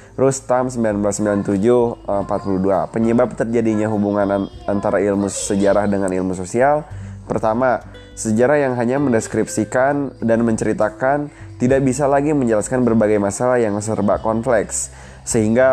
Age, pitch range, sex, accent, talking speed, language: 20-39, 100-120 Hz, male, native, 105 wpm, Indonesian